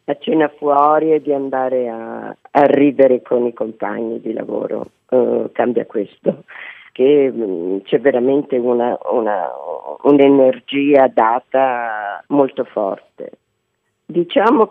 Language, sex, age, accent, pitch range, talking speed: Italian, female, 50-69, native, 125-155 Hz, 120 wpm